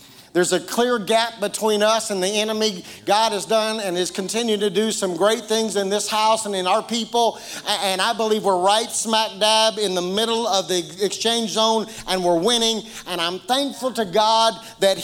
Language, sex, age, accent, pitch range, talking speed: English, male, 50-69, American, 185-220 Hz, 200 wpm